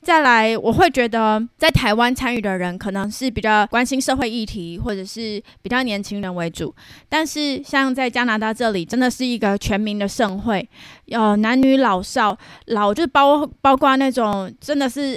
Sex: female